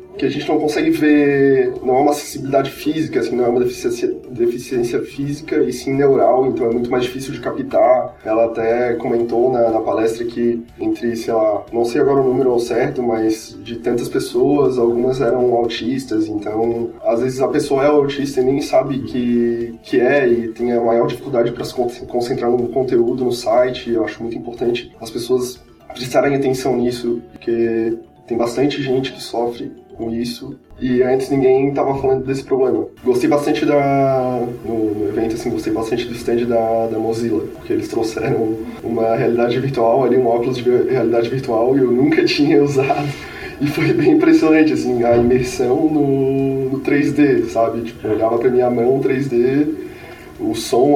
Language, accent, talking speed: Portuguese, Brazilian, 180 wpm